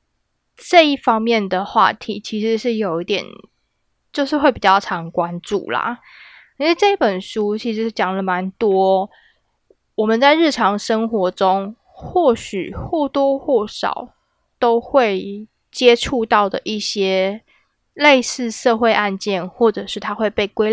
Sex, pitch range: female, 195-260 Hz